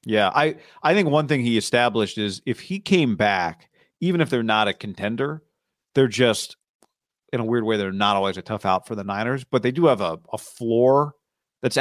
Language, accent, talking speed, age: English, American, 215 wpm, 40-59